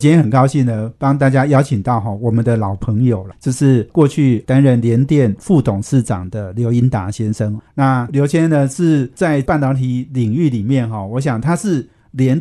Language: Chinese